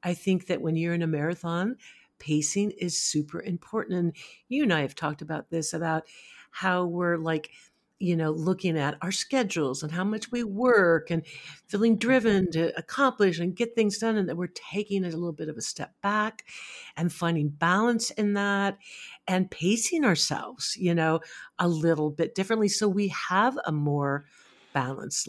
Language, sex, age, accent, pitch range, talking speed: English, female, 50-69, American, 155-210 Hz, 180 wpm